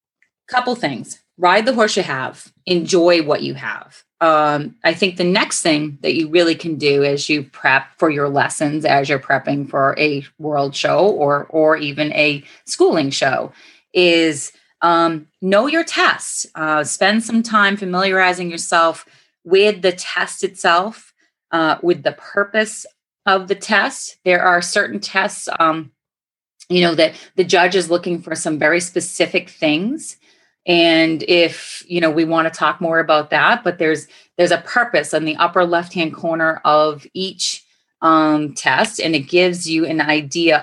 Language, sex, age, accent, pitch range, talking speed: English, female, 30-49, American, 155-190 Hz, 165 wpm